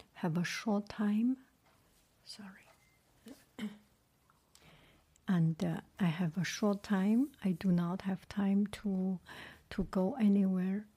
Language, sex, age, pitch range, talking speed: English, female, 60-79, 190-220 Hz, 115 wpm